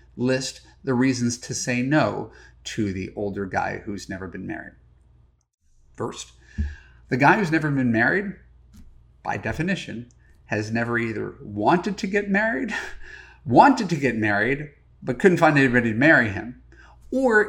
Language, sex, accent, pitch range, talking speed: English, male, American, 100-150 Hz, 145 wpm